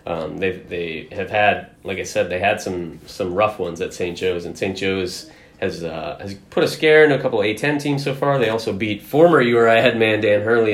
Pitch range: 95-120 Hz